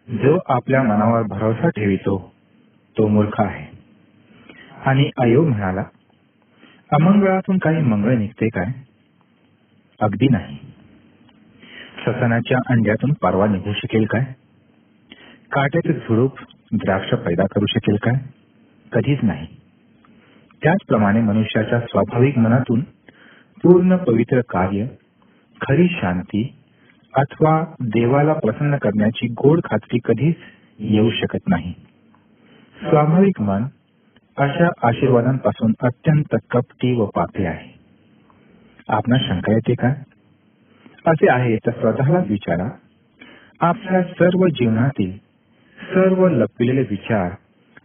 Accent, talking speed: native, 65 wpm